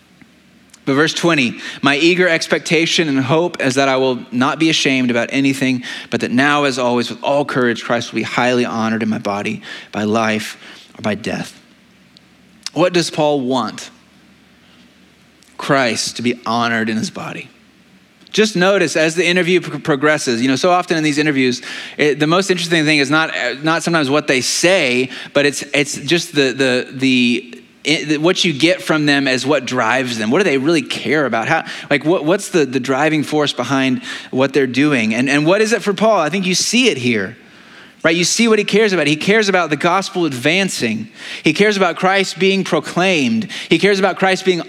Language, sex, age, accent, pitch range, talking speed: English, male, 30-49, American, 130-175 Hz, 195 wpm